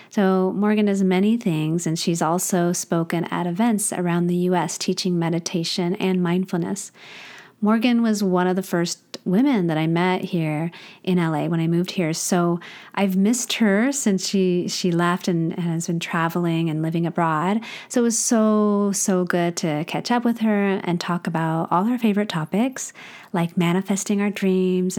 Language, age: English, 30-49